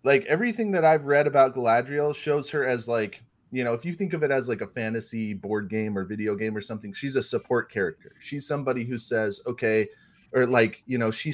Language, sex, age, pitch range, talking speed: English, male, 30-49, 105-130 Hz, 230 wpm